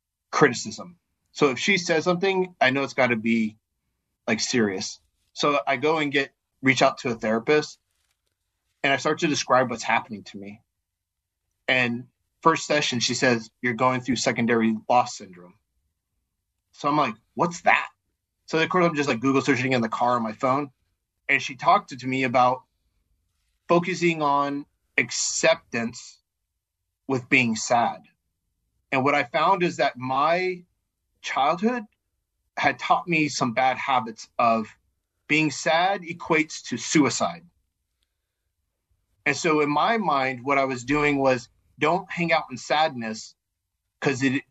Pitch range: 95-150 Hz